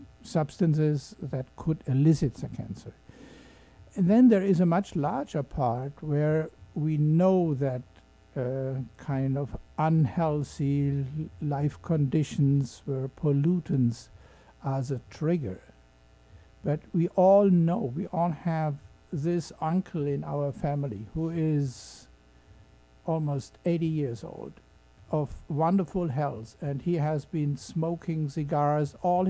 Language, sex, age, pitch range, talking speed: English, male, 60-79, 140-170 Hz, 115 wpm